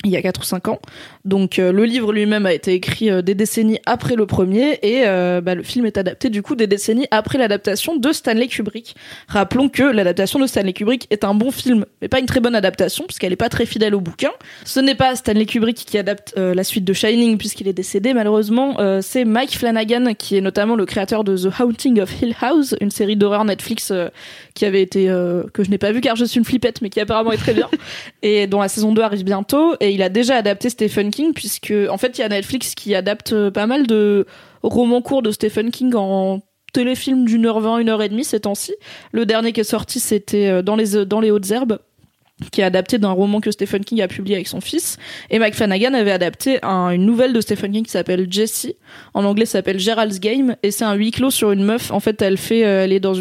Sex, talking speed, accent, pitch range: female, 245 wpm, French, 195-235 Hz